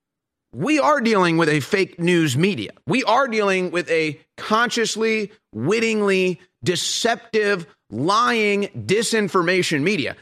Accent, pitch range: American, 140-195 Hz